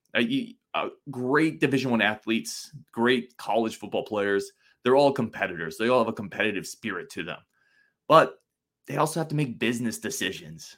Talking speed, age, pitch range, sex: 165 wpm, 20-39, 115-180 Hz, male